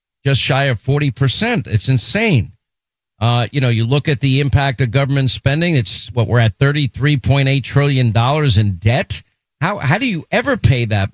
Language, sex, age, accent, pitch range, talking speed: English, male, 50-69, American, 115-145 Hz, 170 wpm